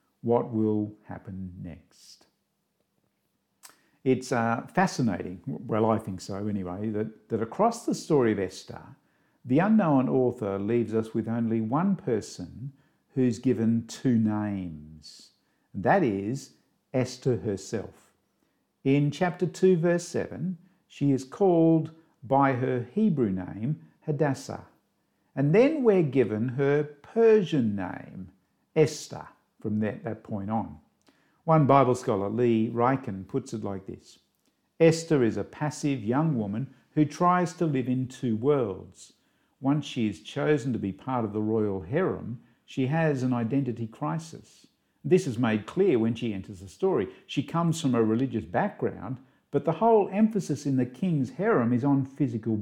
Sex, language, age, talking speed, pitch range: male, English, 50-69, 145 wpm, 110-150 Hz